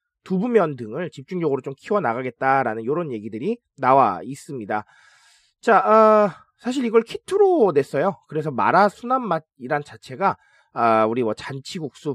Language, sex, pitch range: Korean, male, 155-245 Hz